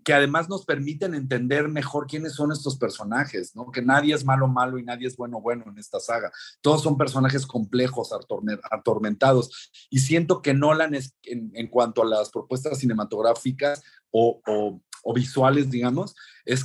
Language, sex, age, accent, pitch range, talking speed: Spanish, male, 40-59, Mexican, 120-140 Hz, 170 wpm